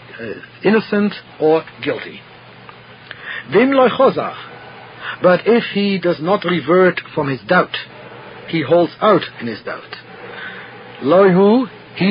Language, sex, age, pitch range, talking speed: English, male, 50-69, 135-195 Hz, 95 wpm